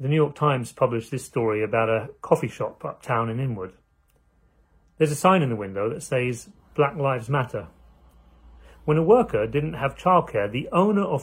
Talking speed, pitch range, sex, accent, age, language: 180 wpm, 105-145 Hz, male, British, 40-59, English